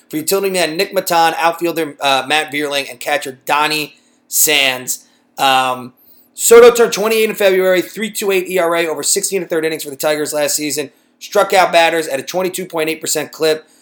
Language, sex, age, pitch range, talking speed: English, male, 30-49, 150-195 Hz, 165 wpm